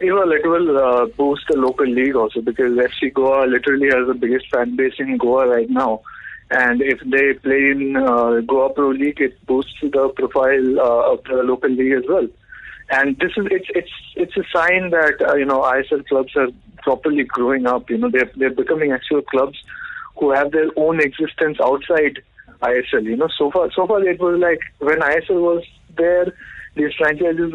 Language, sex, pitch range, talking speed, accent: English, male, 135-175 Hz, 195 wpm, Indian